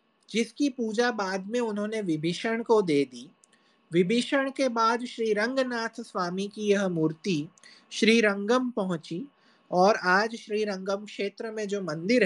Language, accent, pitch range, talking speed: Hindi, native, 195-240 Hz, 140 wpm